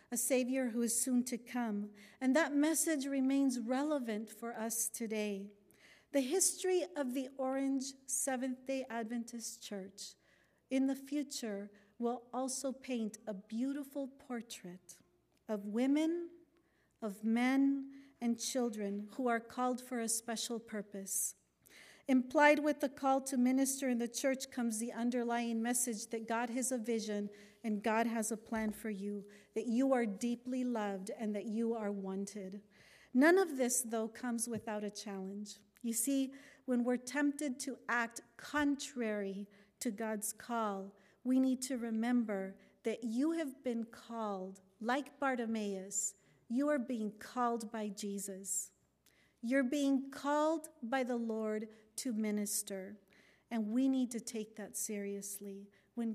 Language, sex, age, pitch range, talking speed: English, female, 50-69, 210-265 Hz, 140 wpm